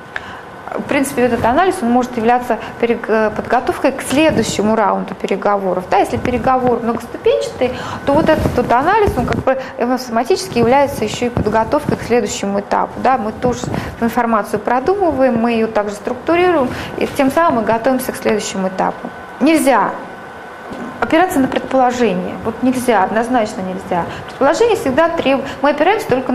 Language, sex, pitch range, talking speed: Russian, female, 230-310 Hz, 140 wpm